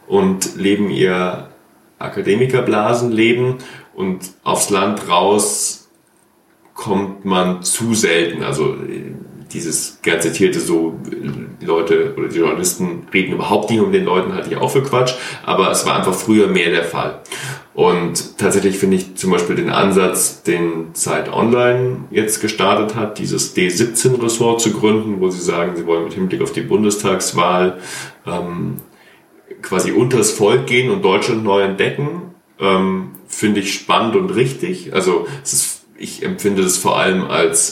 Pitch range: 95-125 Hz